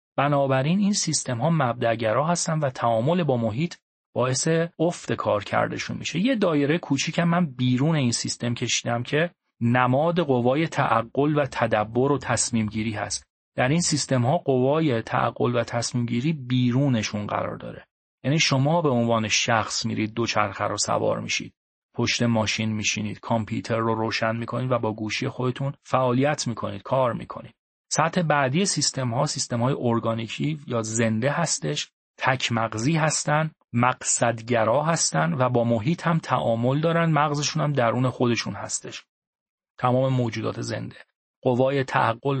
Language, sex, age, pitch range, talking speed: Persian, male, 30-49, 115-150 Hz, 140 wpm